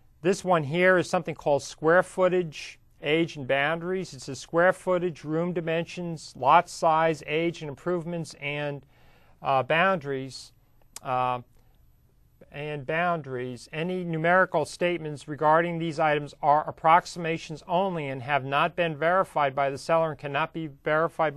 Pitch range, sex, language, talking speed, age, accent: 140-170 Hz, male, English, 130 wpm, 40-59, American